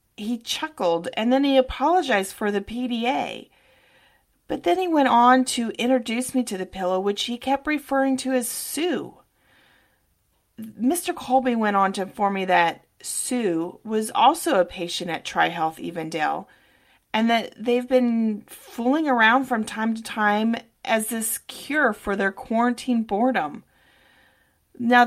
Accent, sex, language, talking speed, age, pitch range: American, female, English, 145 wpm, 30-49, 180-250 Hz